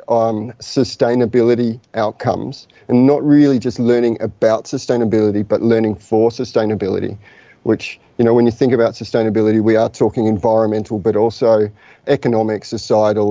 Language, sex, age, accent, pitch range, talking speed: English, male, 30-49, Australian, 110-120 Hz, 135 wpm